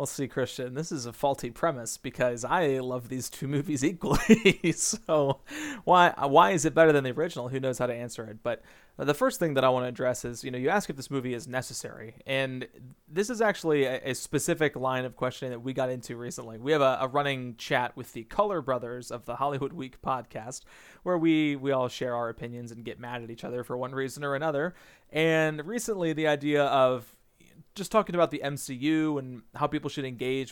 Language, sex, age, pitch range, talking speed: English, male, 30-49, 125-155 Hz, 220 wpm